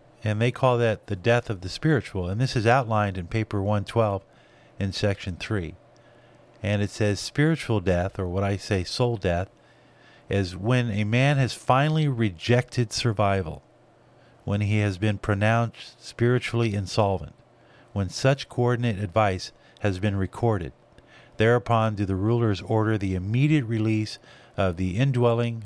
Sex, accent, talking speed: male, American, 145 wpm